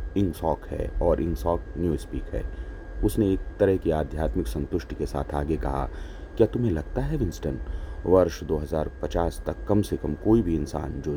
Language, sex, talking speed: Hindi, male, 185 wpm